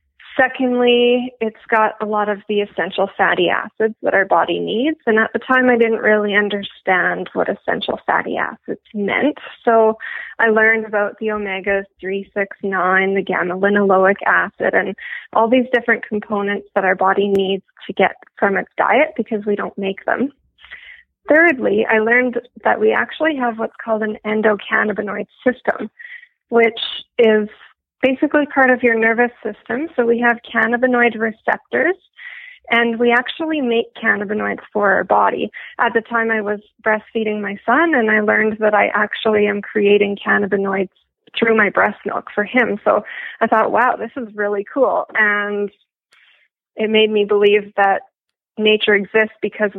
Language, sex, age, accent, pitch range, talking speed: English, female, 20-39, American, 205-240 Hz, 160 wpm